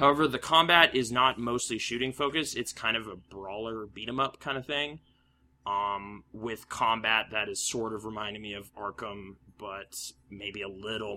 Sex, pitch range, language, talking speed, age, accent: male, 100-120 Hz, English, 170 wpm, 20-39, American